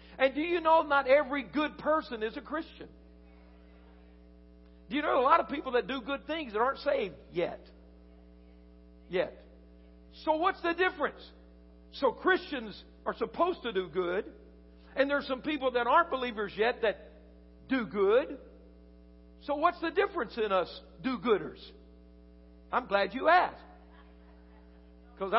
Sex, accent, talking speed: male, American, 150 wpm